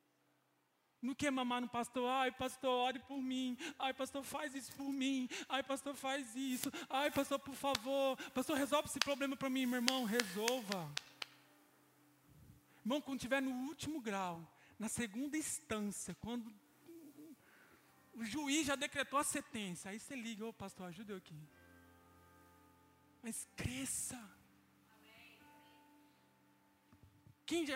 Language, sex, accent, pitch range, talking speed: Portuguese, male, Brazilian, 235-310 Hz, 130 wpm